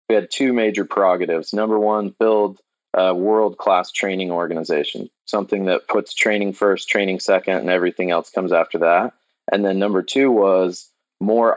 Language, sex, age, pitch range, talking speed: English, male, 20-39, 90-105 Hz, 160 wpm